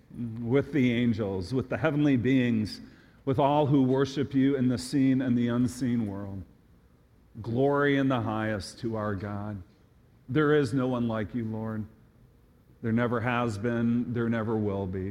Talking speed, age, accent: 165 wpm, 40-59, American